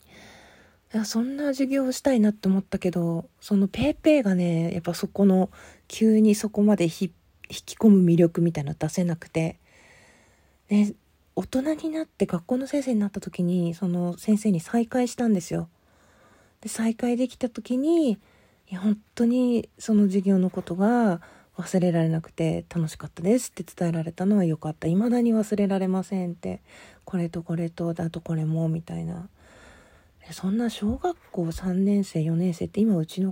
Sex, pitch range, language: female, 165-215 Hz, Japanese